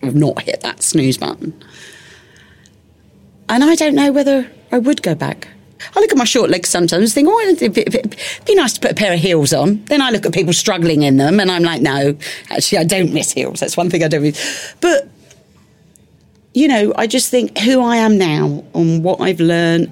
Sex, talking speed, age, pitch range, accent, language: female, 220 wpm, 40-59, 160-230 Hz, British, English